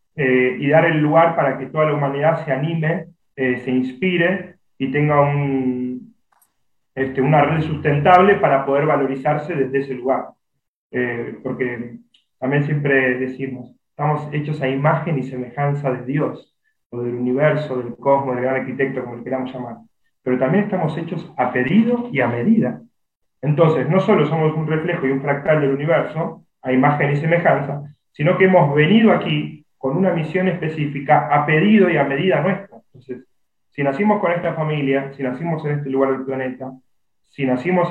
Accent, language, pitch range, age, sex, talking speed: Argentinian, Spanish, 130-160 Hz, 30-49, male, 170 wpm